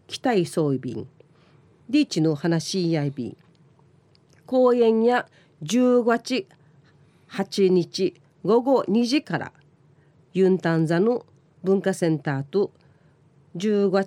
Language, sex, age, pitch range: Japanese, female, 40-59, 155-225 Hz